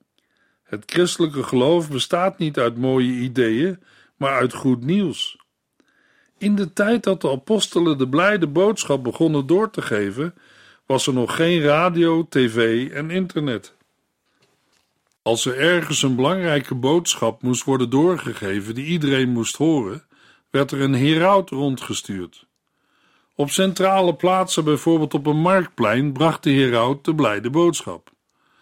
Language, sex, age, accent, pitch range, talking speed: Dutch, male, 50-69, Dutch, 130-180 Hz, 135 wpm